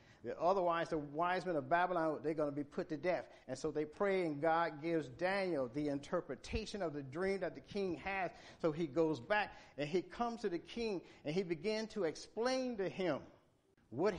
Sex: male